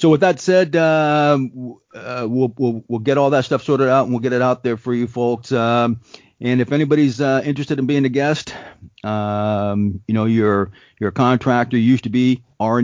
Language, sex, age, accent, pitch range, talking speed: English, male, 40-59, American, 110-140 Hz, 205 wpm